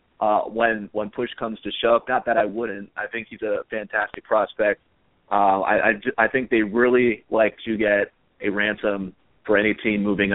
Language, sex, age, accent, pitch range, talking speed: English, male, 30-49, American, 100-115 Hz, 190 wpm